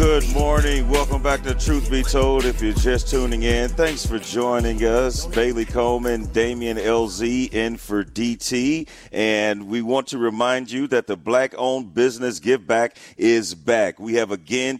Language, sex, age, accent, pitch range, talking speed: English, male, 40-59, American, 110-130 Hz, 170 wpm